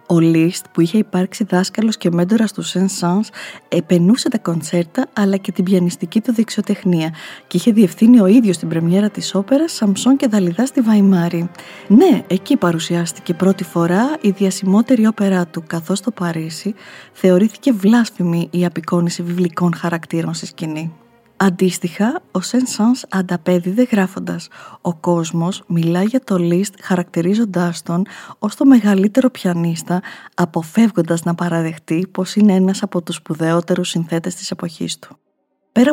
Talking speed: 140 wpm